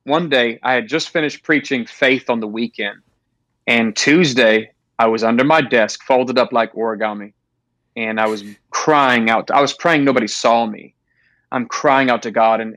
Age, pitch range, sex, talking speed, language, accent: 30-49, 110-135 Hz, male, 190 wpm, English, American